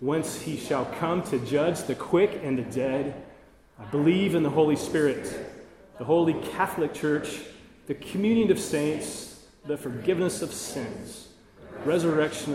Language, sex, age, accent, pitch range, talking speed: English, male, 30-49, American, 115-155 Hz, 145 wpm